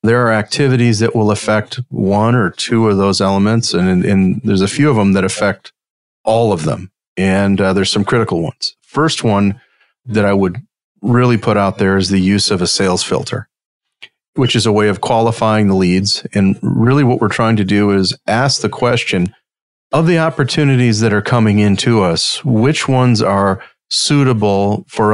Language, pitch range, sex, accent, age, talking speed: English, 100-120 Hz, male, American, 40-59, 185 wpm